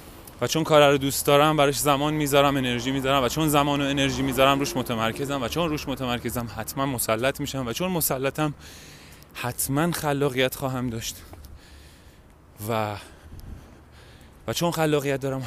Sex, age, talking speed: male, 30-49, 145 wpm